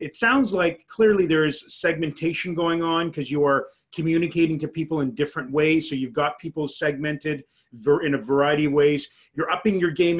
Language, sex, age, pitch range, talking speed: English, male, 30-49, 145-175 Hz, 195 wpm